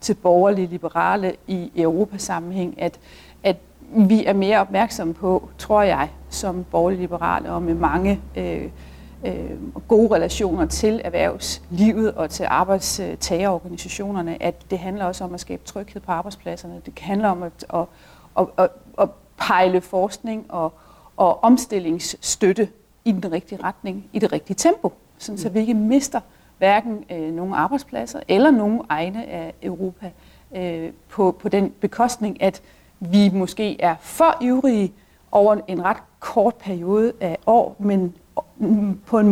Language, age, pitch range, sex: Danish, 40-59, 175-215 Hz, female